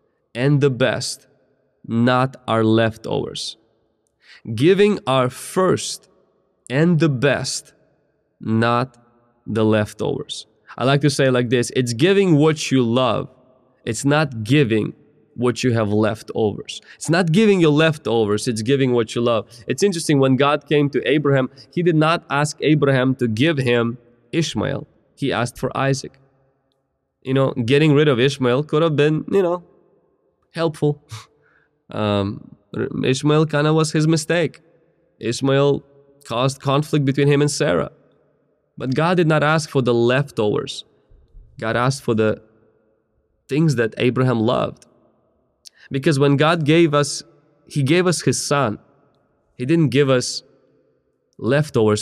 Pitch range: 120-150 Hz